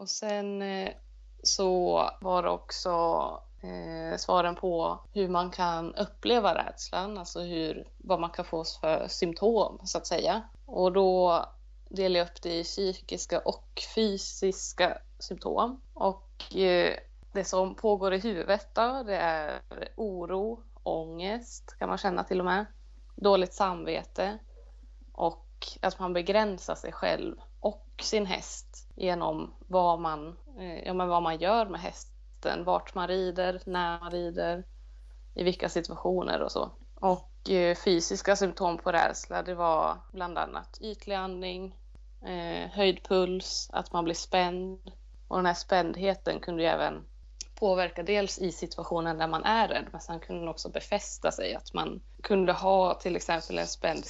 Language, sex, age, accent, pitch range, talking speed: Swedish, female, 20-39, native, 170-195 Hz, 140 wpm